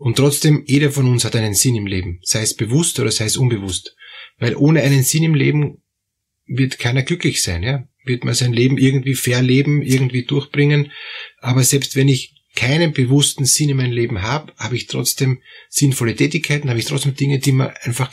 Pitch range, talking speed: 115-145 Hz, 200 wpm